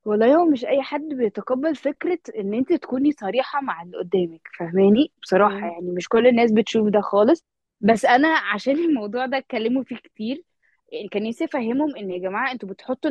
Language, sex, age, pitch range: Arabic, female, 20-39, 200-280 Hz